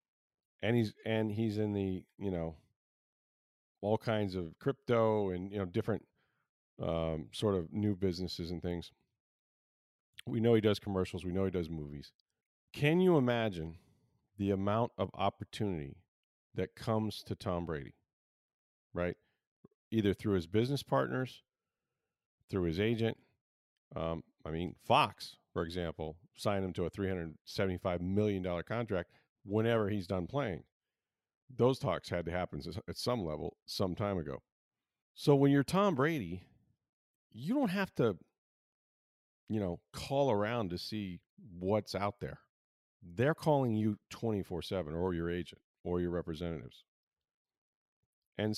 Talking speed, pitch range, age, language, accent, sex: 140 wpm, 90-115 Hz, 40-59, English, American, male